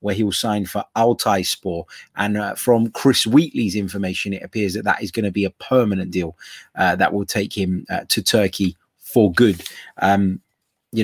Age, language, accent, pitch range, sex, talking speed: 20-39, English, British, 95-110 Hz, male, 195 wpm